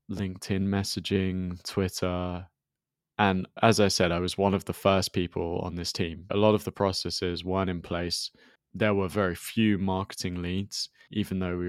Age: 20-39